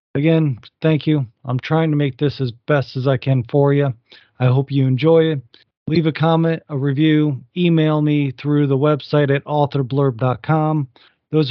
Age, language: 40-59, English